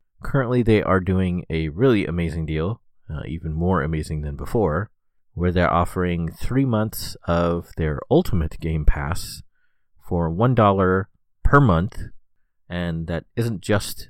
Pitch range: 80-105 Hz